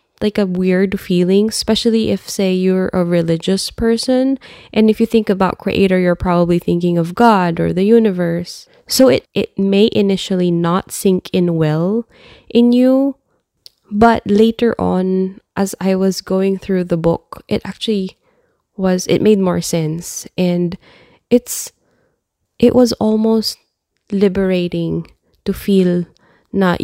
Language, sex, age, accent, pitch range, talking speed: Filipino, female, 20-39, native, 175-220 Hz, 140 wpm